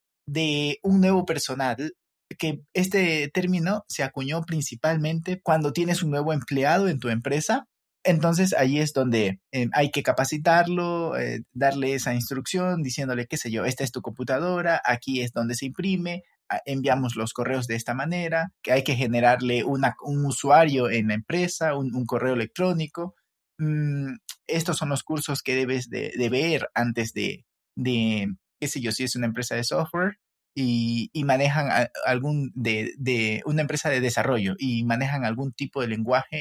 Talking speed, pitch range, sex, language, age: 170 wpm, 125-165 Hz, male, Spanish, 30-49